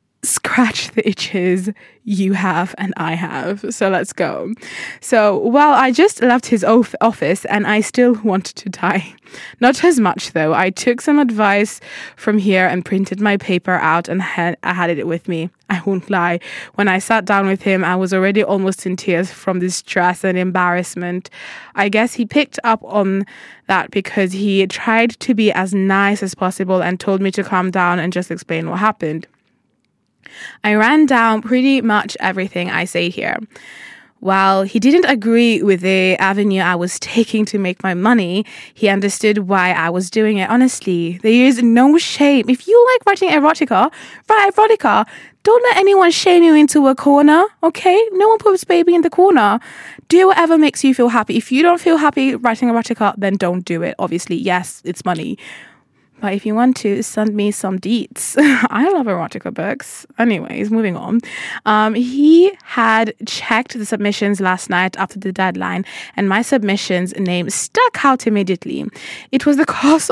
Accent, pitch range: British, 190-255 Hz